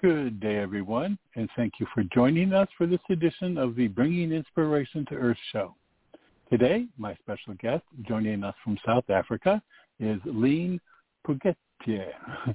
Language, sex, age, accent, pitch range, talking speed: English, male, 60-79, American, 115-170 Hz, 150 wpm